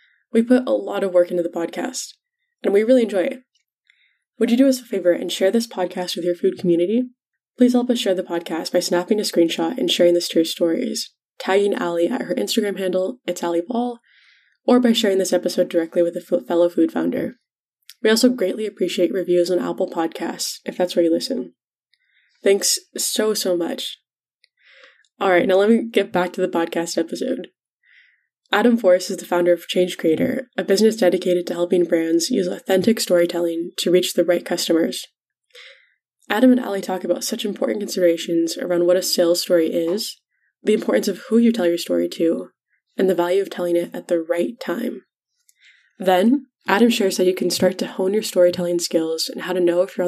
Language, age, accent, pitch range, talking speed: English, 10-29, American, 175-225 Hz, 200 wpm